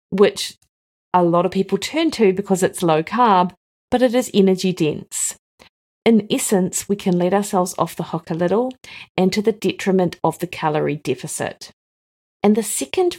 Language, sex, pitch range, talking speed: English, female, 170-210 Hz, 165 wpm